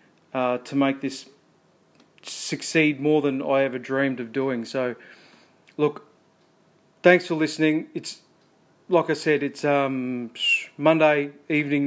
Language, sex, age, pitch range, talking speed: English, male, 30-49, 135-150 Hz, 125 wpm